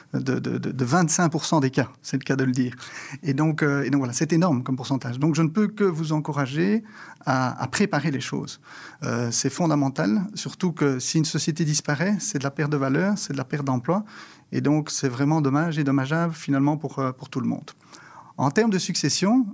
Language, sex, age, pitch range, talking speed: English, male, 40-59, 140-185 Hz, 220 wpm